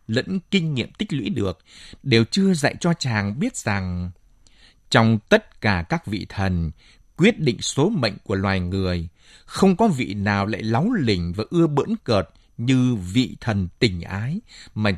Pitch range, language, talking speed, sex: 95-150 Hz, Vietnamese, 170 wpm, male